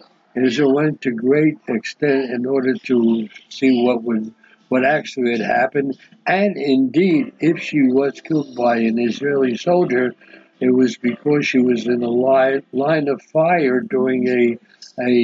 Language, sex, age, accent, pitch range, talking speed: English, male, 60-79, American, 125-150 Hz, 155 wpm